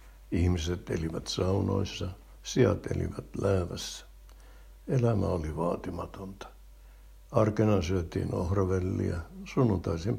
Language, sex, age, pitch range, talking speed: Finnish, male, 60-79, 90-110 Hz, 75 wpm